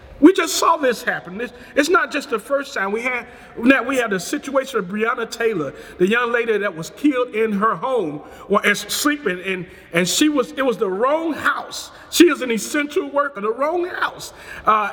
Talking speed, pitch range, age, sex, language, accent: 195 wpm, 205-300 Hz, 40-59, male, English, American